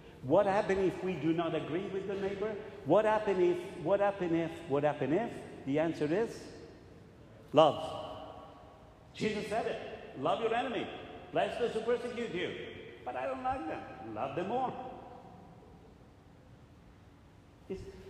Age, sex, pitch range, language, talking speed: 60-79, male, 130-195 Hz, English, 145 wpm